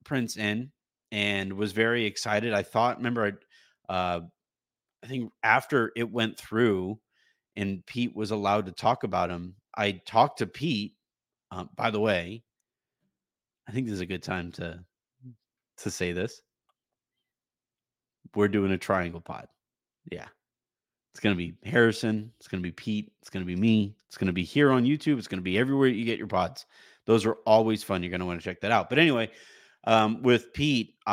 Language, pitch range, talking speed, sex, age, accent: English, 95-120 Hz, 175 wpm, male, 30-49, American